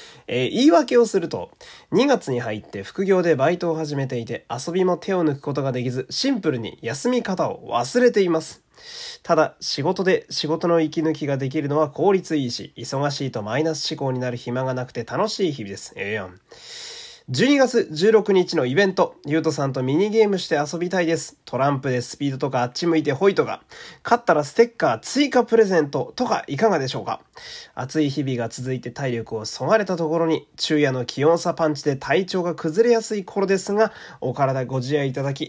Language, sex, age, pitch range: Japanese, male, 20-39, 140-205 Hz